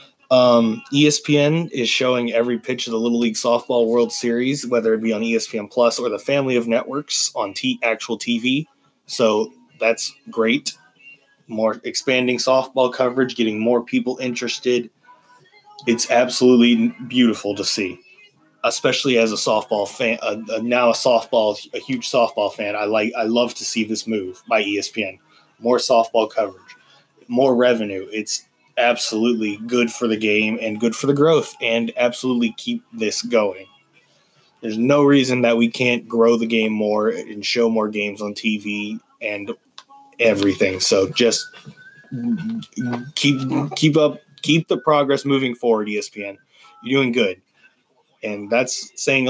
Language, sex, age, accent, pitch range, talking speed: English, male, 20-39, American, 115-140 Hz, 150 wpm